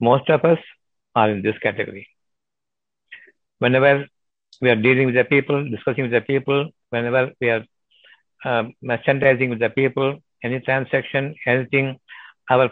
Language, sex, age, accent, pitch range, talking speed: Tamil, male, 60-79, native, 120-140 Hz, 140 wpm